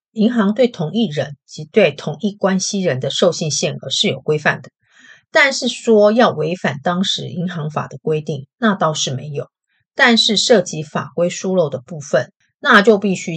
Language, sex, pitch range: Chinese, female, 145-200 Hz